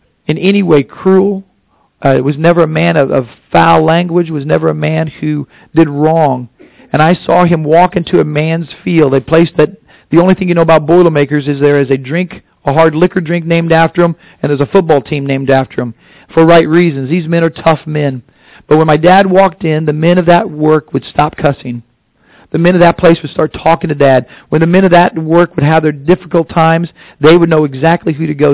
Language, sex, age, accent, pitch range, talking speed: English, male, 40-59, American, 140-175 Hz, 230 wpm